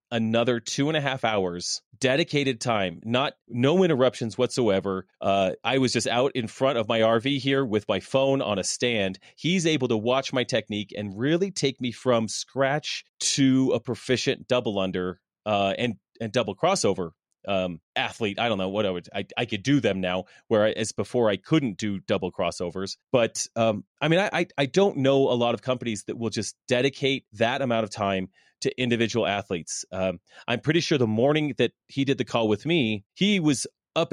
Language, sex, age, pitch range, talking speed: English, male, 30-49, 110-140 Hz, 195 wpm